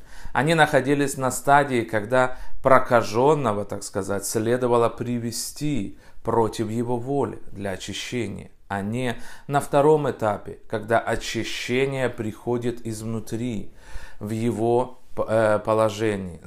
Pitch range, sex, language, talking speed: 100-125 Hz, male, Russian, 100 wpm